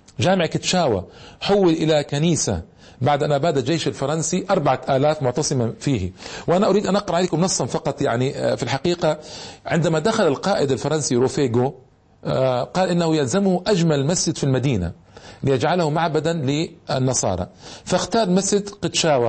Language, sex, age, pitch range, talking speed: Arabic, male, 40-59, 140-185 Hz, 130 wpm